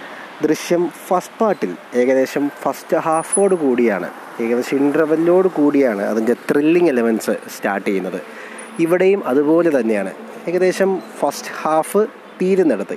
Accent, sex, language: native, male, Malayalam